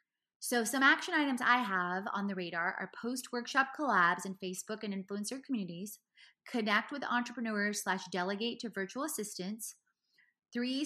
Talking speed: 145 wpm